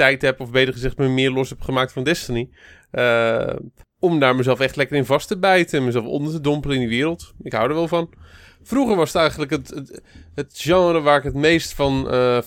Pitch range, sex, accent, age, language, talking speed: 125-145 Hz, male, Dutch, 30-49, Dutch, 235 wpm